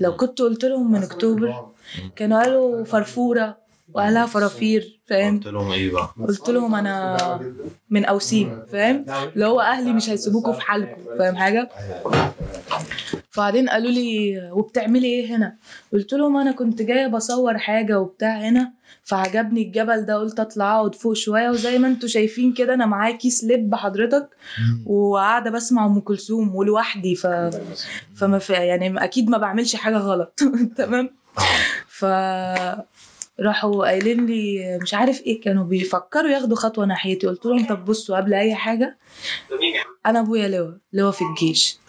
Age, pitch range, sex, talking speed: 20-39, 200-245 Hz, female, 145 wpm